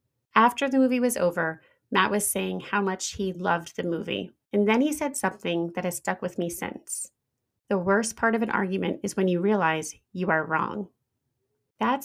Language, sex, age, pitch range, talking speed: English, female, 30-49, 175-215 Hz, 195 wpm